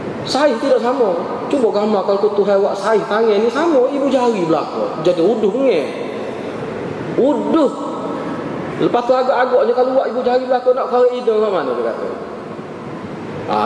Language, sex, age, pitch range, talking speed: Malay, male, 20-39, 225-300 Hz, 150 wpm